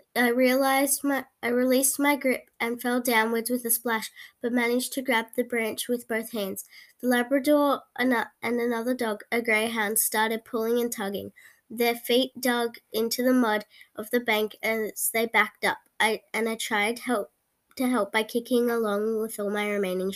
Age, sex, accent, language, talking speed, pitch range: 10-29, female, Australian, English, 180 wpm, 220-255 Hz